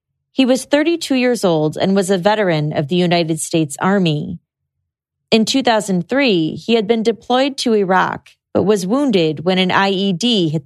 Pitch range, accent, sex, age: 165-225 Hz, American, female, 30-49